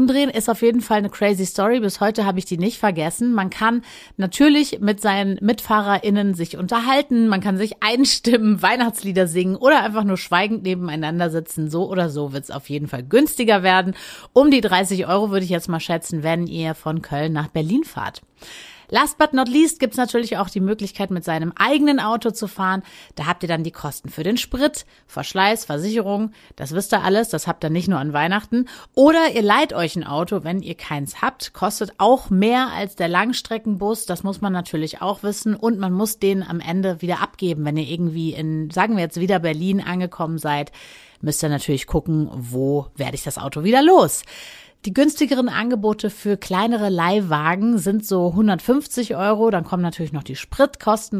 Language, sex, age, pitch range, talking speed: German, female, 30-49, 165-220 Hz, 195 wpm